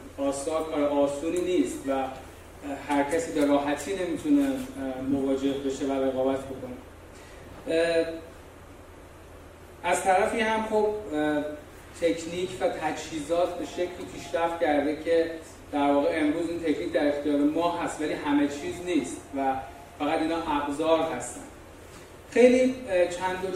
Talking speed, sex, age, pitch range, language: 120 wpm, male, 30-49, 140-185 Hz, Persian